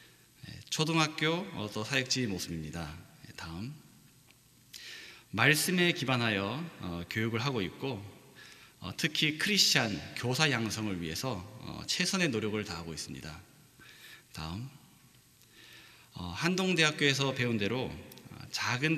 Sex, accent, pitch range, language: male, native, 105-150 Hz, Korean